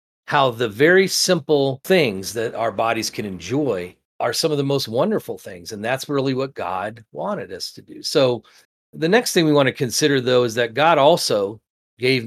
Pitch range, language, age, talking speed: 110-145 Hz, English, 40-59, 195 wpm